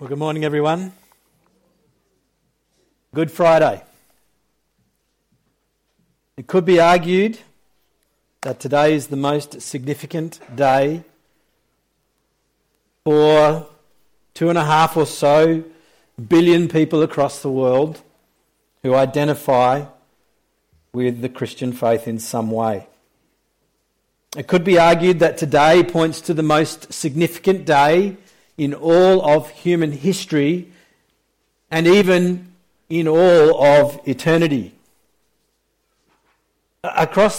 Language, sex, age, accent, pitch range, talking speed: English, male, 50-69, Australian, 145-175 Hz, 100 wpm